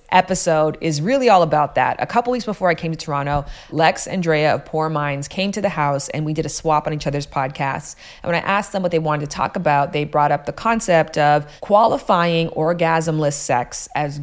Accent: American